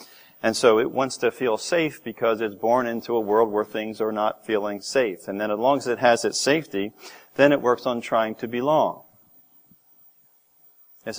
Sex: male